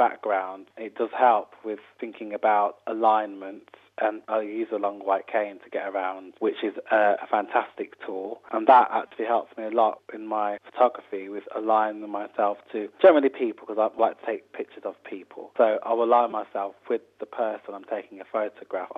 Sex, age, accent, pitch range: male, 20-39, British, 100-115 Hz